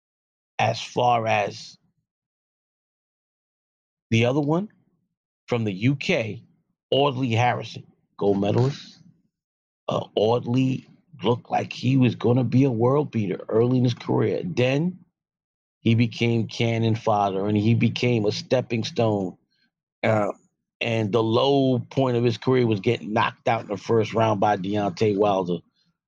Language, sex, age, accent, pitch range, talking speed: English, male, 40-59, American, 115-155 Hz, 135 wpm